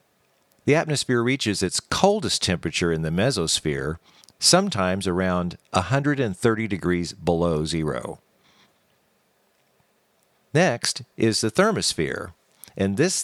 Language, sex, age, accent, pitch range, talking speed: English, male, 50-69, American, 85-115 Hz, 95 wpm